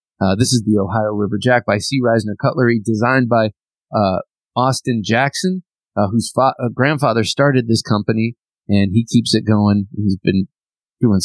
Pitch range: 105-130 Hz